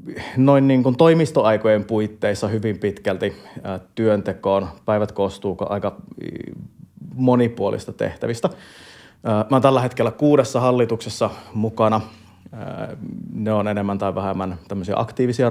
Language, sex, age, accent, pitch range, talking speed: Finnish, male, 30-49, native, 100-120 Hz, 100 wpm